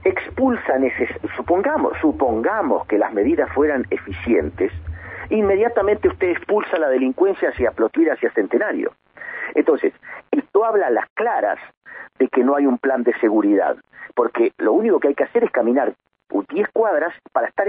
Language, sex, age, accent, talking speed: Spanish, male, 50-69, Argentinian, 155 wpm